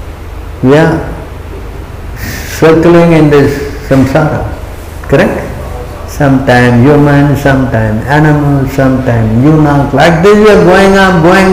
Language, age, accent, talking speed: English, 60-79, Indian, 110 wpm